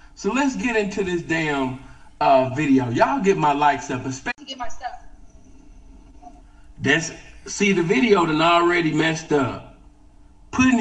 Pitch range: 140-225 Hz